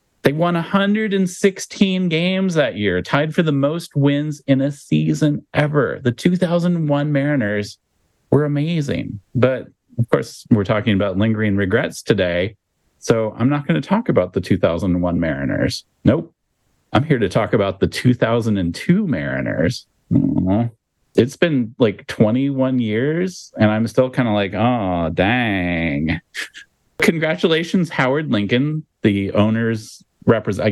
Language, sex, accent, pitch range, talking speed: English, male, American, 105-155 Hz, 130 wpm